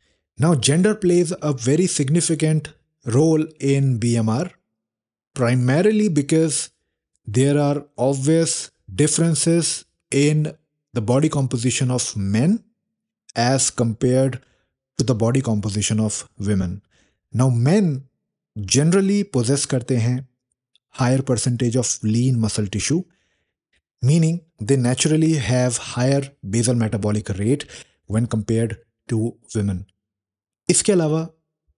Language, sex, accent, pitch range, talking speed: English, male, Indian, 110-150 Hz, 100 wpm